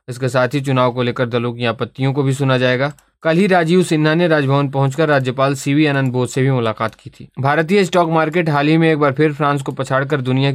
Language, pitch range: Hindi, 130-155 Hz